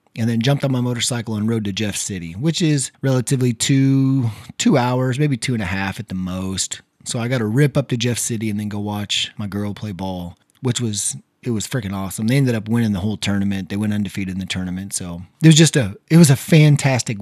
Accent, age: American, 30-49